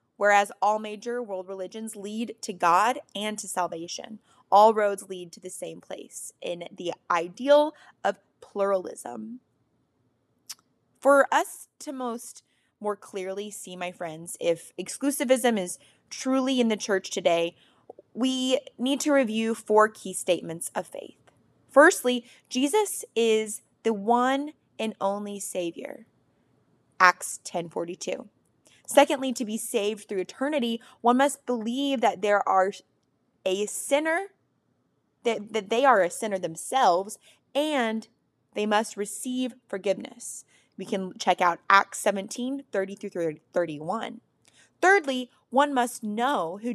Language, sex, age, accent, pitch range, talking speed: English, female, 20-39, American, 195-255 Hz, 125 wpm